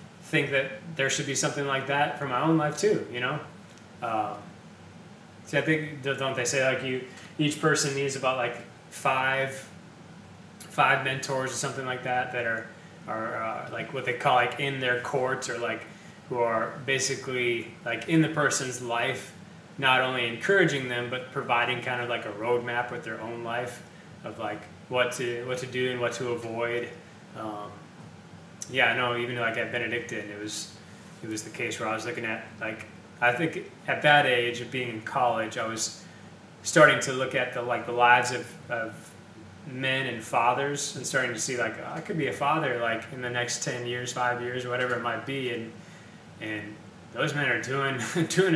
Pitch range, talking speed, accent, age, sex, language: 120-140 Hz, 195 wpm, American, 20-39, male, English